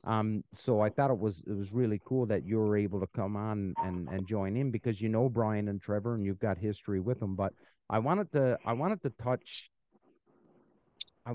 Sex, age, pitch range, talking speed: male, 40-59, 95-120 Hz, 220 wpm